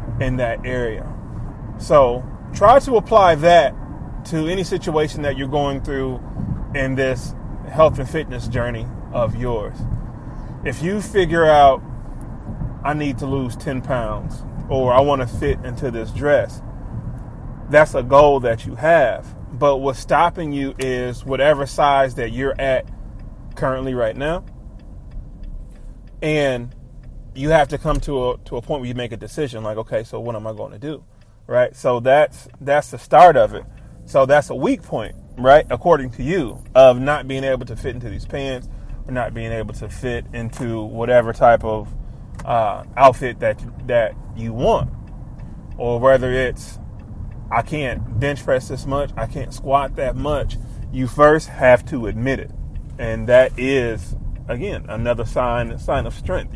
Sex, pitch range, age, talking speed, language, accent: male, 115-140 Hz, 30-49, 165 wpm, English, American